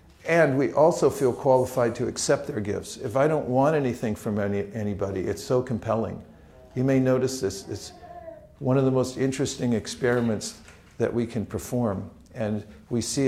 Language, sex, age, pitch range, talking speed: English, male, 50-69, 95-120 Hz, 165 wpm